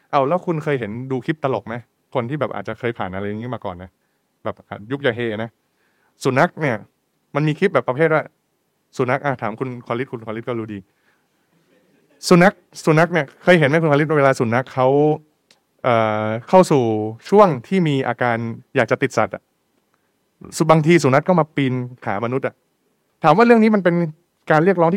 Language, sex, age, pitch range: Thai, male, 20-39, 115-165 Hz